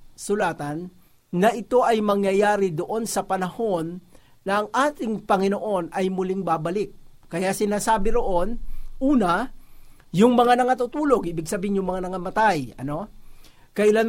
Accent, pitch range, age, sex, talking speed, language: native, 170-220 Hz, 50-69, male, 125 wpm, Filipino